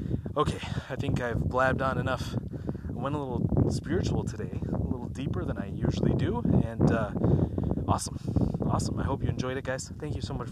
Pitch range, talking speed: 115-145 Hz, 195 wpm